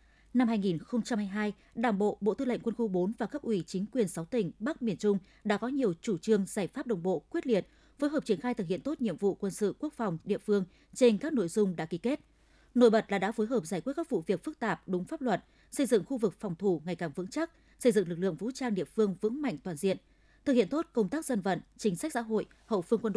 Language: Vietnamese